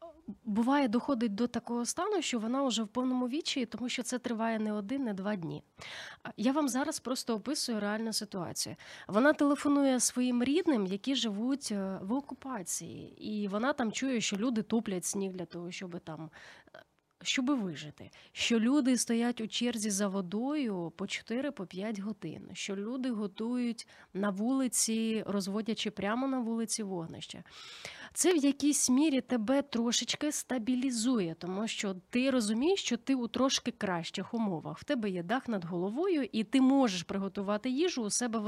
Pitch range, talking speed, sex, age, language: 205-260 Hz, 155 wpm, female, 30-49, Ukrainian